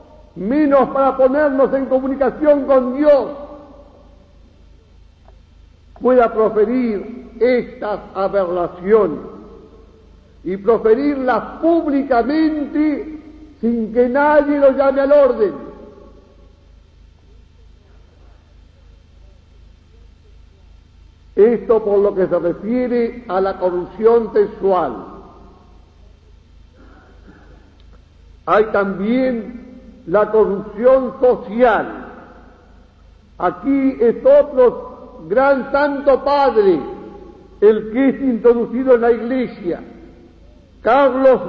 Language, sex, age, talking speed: Spanish, male, 50-69, 70 wpm